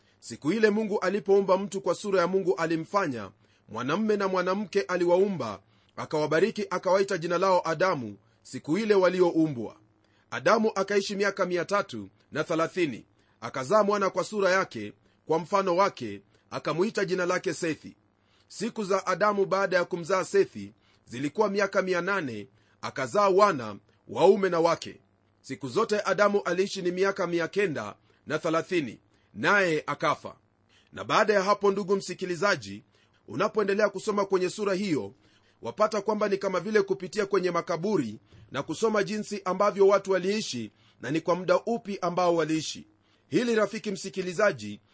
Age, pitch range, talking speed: 40-59, 125-205 Hz, 135 wpm